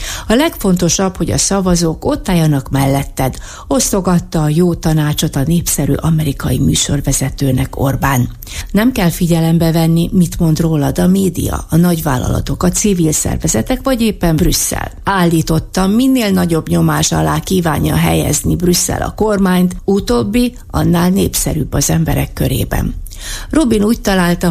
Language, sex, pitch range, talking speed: Hungarian, female, 145-190 Hz, 130 wpm